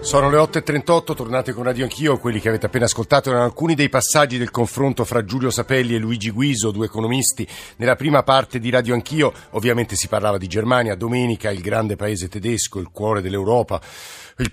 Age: 50-69